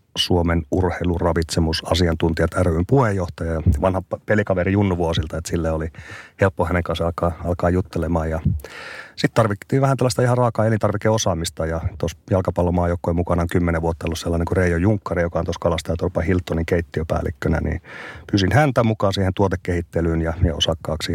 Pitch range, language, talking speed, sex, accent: 85-100 Hz, Finnish, 155 wpm, male, native